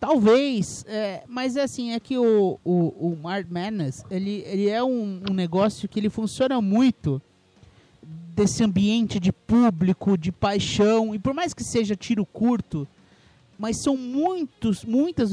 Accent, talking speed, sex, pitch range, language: Brazilian, 155 wpm, male, 170-230 Hz, English